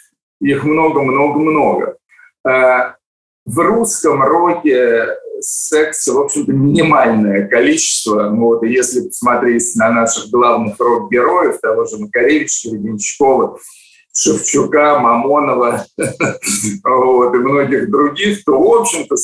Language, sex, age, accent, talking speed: Russian, male, 50-69, native, 95 wpm